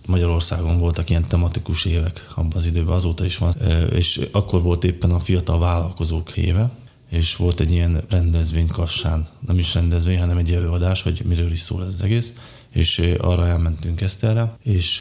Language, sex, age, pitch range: Hungarian, male, 20-39, 85-95 Hz